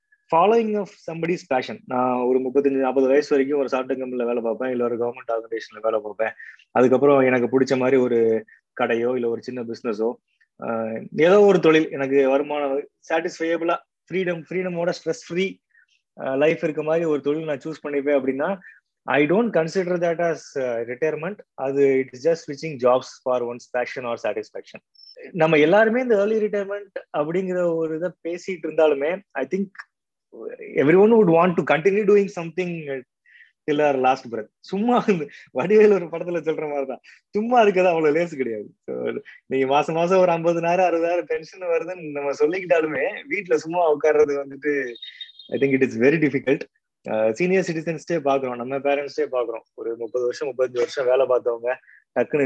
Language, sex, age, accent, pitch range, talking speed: Tamil, male, 20-39, native, 130-175 Hz, 135 wpm